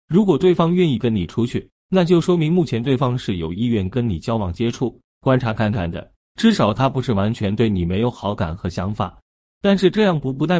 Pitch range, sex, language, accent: 100-150 Hz, male, Chinese, native